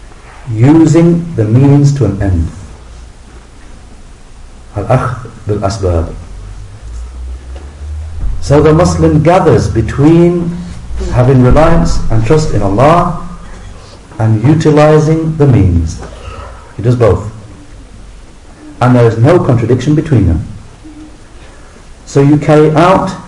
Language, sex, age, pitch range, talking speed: English, male, 50-69, 100-140 Hz, 100 wpm